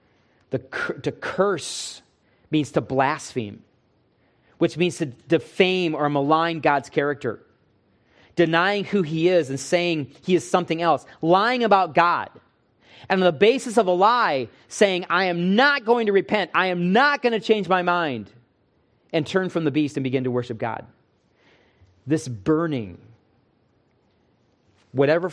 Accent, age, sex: American, 30-49, male